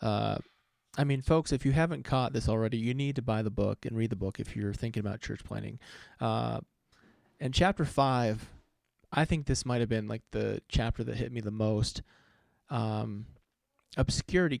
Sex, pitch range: male, 110-145 Hz